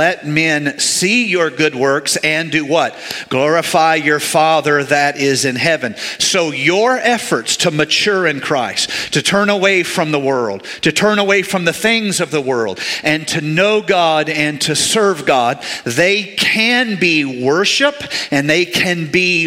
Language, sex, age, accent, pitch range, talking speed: English, male, 50-69, American, 145-180 Hz, 165 wpm